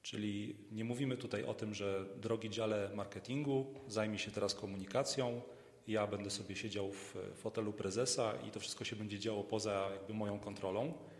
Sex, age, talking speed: male, 40-59, 160 wpm